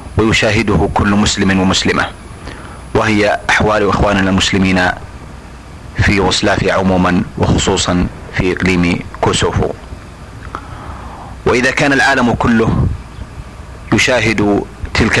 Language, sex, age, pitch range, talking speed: Arabic, male, 40-59, 95-110 Hz, 85 wpm